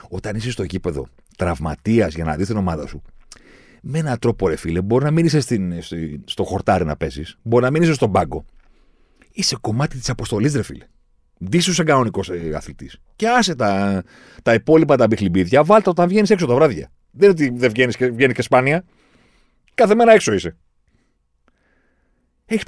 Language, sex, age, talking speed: Greek, male, 40-59, 160 wpm